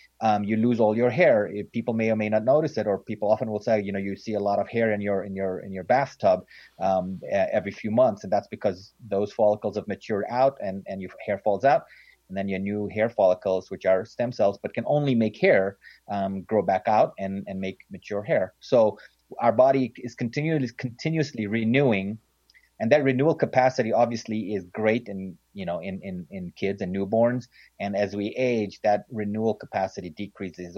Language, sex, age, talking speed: English, male, 30-49, 205 wpm